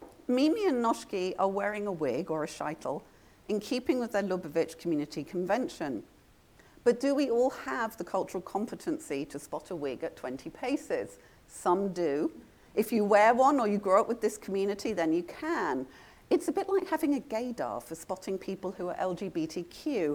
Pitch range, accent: 175-275 Hz, British